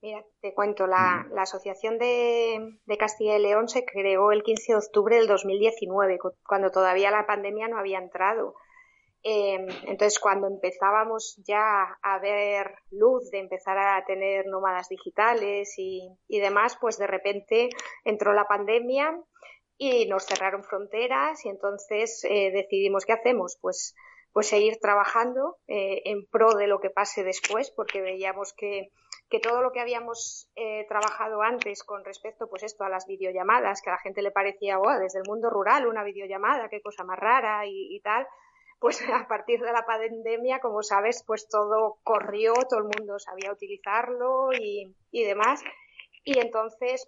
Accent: Spanish